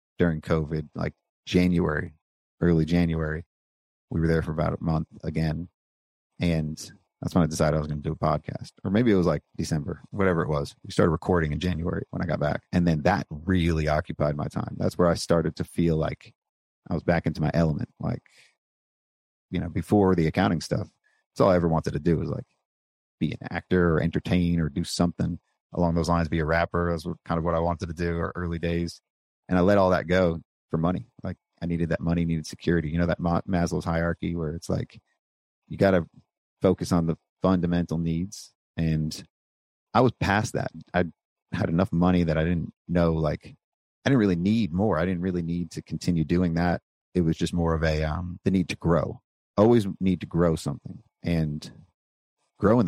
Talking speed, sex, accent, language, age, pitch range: 205 wpm, male, American, English, 40-59, 80-90 Hz